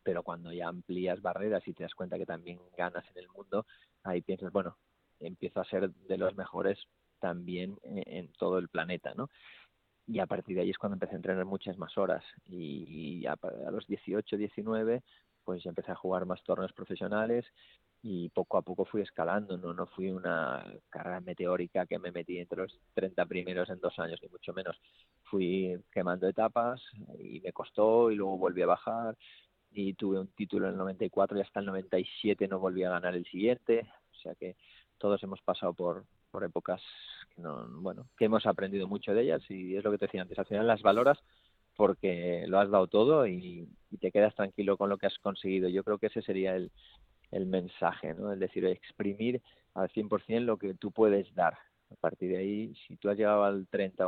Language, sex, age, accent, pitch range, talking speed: Spanish, male, 30-49, Spanish, 90-105 Hz, 200 wpm